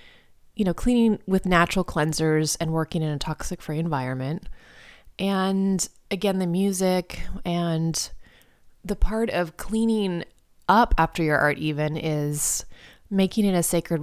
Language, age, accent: English, 20-39, American